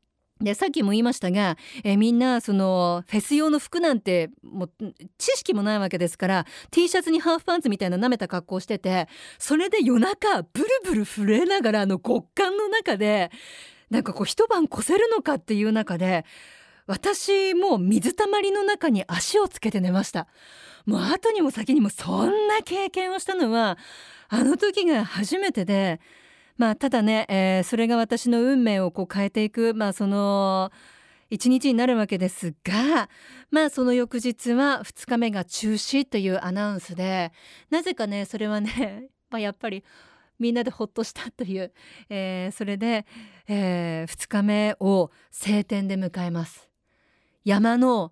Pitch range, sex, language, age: 195-275 Hz, female, Japanese, 40-59